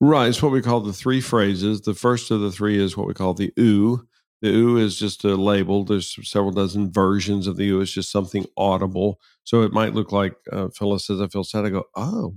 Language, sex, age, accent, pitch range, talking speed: English, male, 50-69, American, 95-110 Hz, 245 wpm